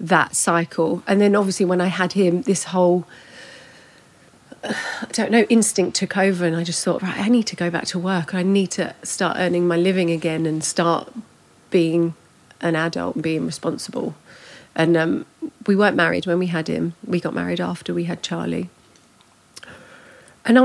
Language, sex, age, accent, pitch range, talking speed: English, female, 40-59, British, 170-195 Hz, 180 wpm